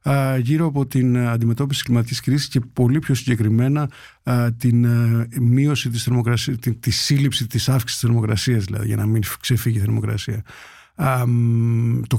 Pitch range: 115-135 Hz